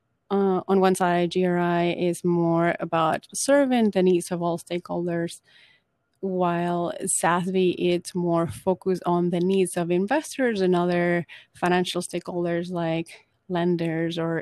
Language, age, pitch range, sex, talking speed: English, 30-49, 170-200 Hz, female, 130 wpm